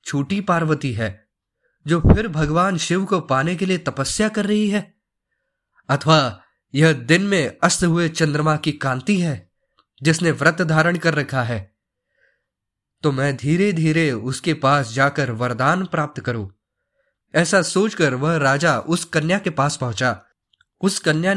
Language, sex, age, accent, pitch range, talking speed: Hindi, male, 20-39, native, 130-180 Hz, 145 wpm